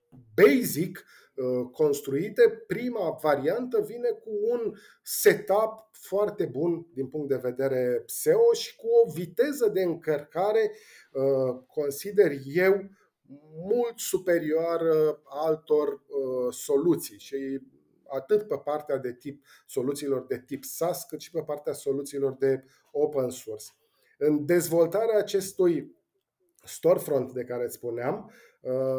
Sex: male